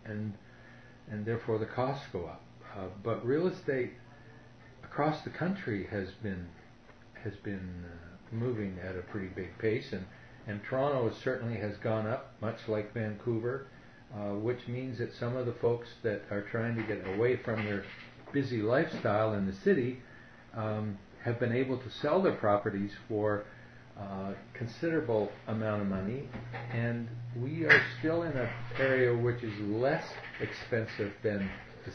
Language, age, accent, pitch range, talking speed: English, 50-69, American, 105-125 Hz, 160 wpm